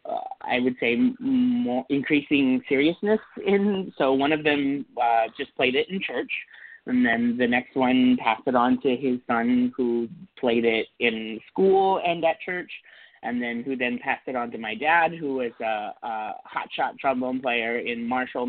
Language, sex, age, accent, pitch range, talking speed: English, male, 30-49, American, 125-195 Hz, 180 wpm